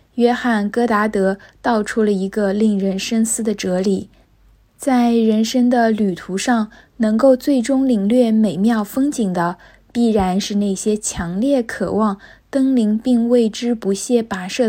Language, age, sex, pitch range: Chinese, 20-39, female, 195-235 Hz